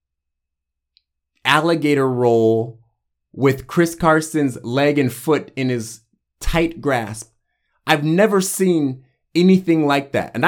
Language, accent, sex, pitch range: English, American, male, 120-175 Hz